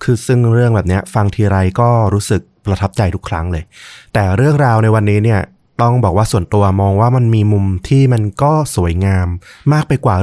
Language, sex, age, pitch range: Thai, male, 20-39, 95-120 Hz